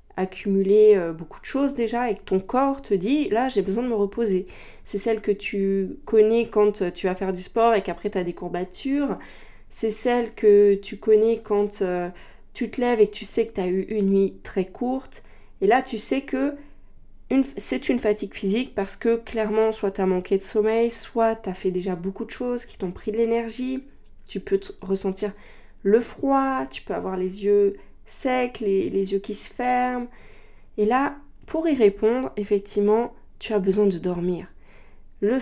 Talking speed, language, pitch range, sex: 195 wpm, French, 195-240 Hz, female